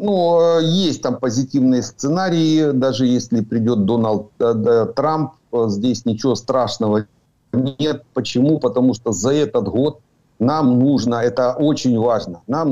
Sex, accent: male, native